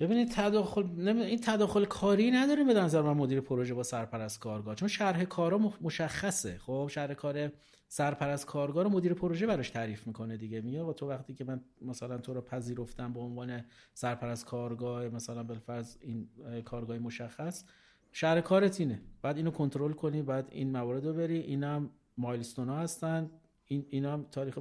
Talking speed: 170 wpm